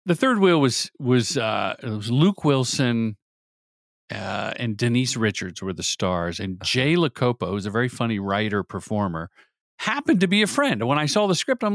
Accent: American